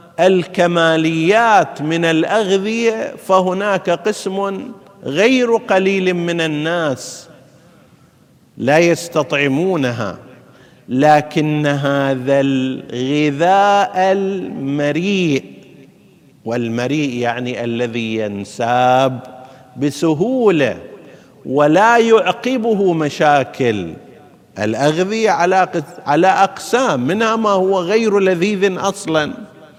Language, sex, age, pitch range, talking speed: Arabic, male, 50-69, 140-200 Hz, 65 wpm